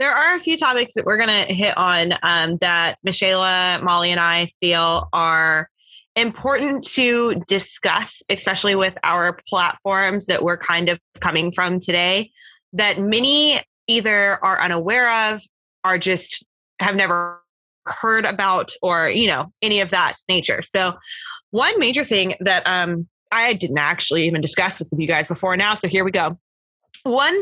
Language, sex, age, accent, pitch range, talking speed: English, female, 20-39, American, 175-210 Hz, 160 wpm